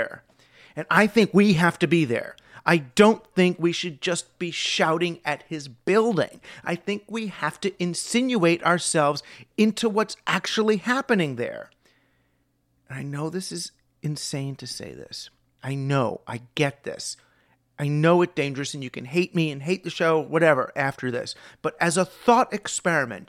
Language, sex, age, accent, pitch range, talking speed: English, male, 40-59, American, 145-185 Hz, 170 wpm